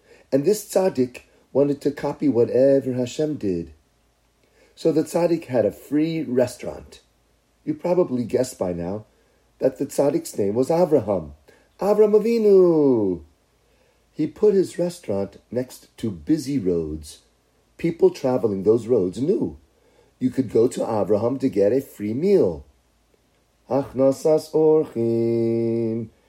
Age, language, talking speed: 40-59, English, 125 wpm